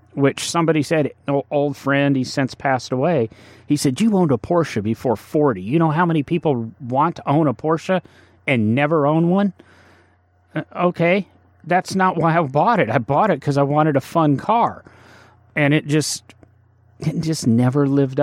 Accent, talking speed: American, 180 wpm